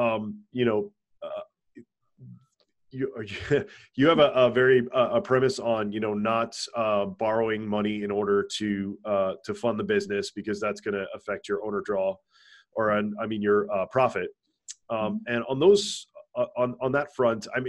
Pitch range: 105-130 Hz